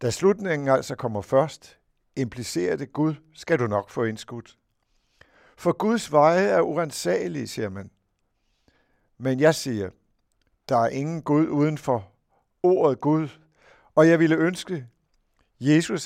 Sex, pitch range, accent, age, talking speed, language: male, 115-160 Hz, native, 60-79, 135 wpm, Danish